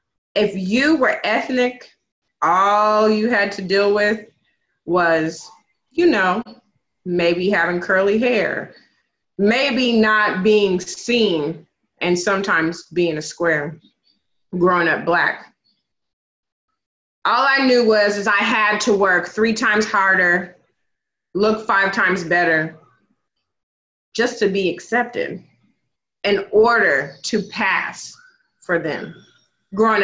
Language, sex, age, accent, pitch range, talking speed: English, female, 30-49, American, 180-215 Hz, 110 wpm